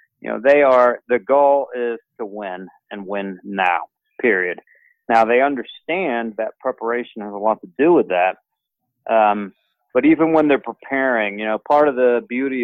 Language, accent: English, American